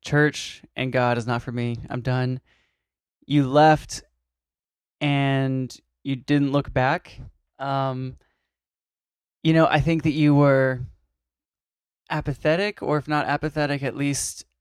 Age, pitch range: 20-39, 125-145 Hz